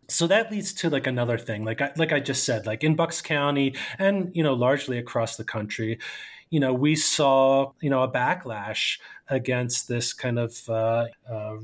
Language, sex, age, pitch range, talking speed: English, male, 30-49, 120-145 Hz, 190 wpm